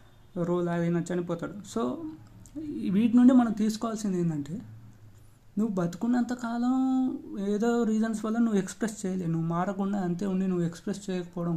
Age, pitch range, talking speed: 20-39, 170-220 Hz, 130 wpm